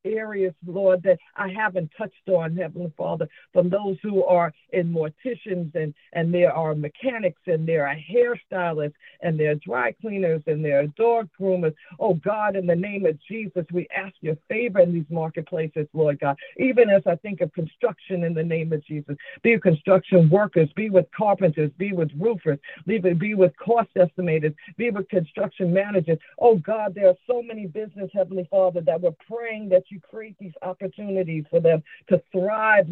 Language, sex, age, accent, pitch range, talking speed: English, female, 50-69, American, 175-210 Hz, 180 wpm